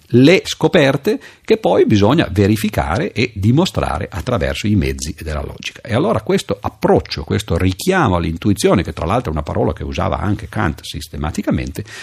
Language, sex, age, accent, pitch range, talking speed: Italian, male, 50-69, native, 85-120 Hz, 155 wpm